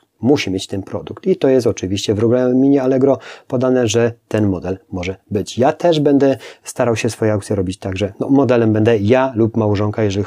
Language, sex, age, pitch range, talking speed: Polish, male, 30-49, 105-125 Hz, 195 wpm